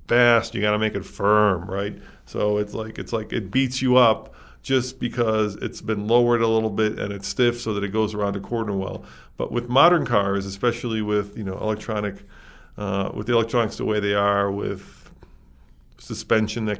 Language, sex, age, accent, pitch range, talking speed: English, male, 40-59, American, 100-120 Hz, 200 wpm